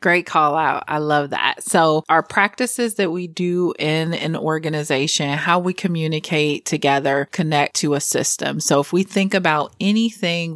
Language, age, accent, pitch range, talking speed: English, 30-49, American, 150-180 Hz, 165 wpm